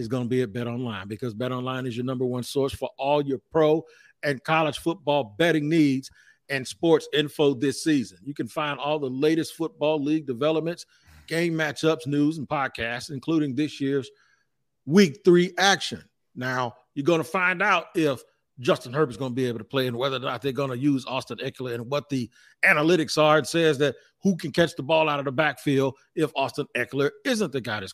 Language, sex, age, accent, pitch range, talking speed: English, male, 40-59, American, 130-155 Hz, 215 wpm